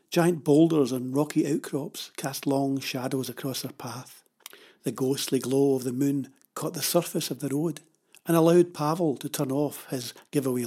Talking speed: 175 wpm